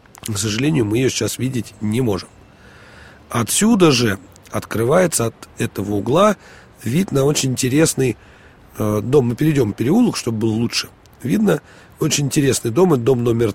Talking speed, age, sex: 140 wpm, 40-59, male